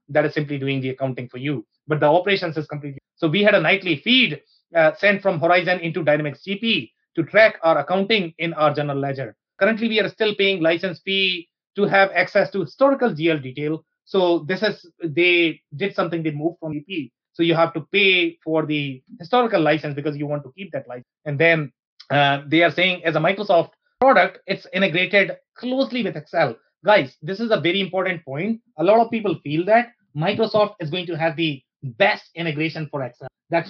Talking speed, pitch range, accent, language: 200 wpm, 150-190 Hz, Indian, English